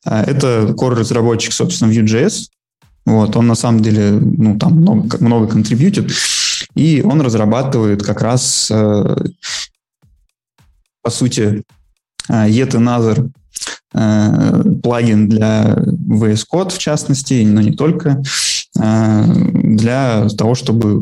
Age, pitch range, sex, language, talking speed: 20-39, 105-130 Hz, male, Russian, 100 wpm